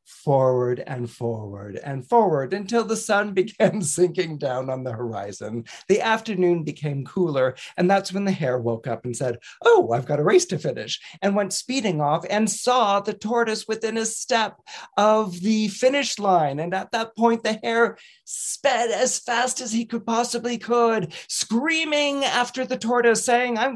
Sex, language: male, English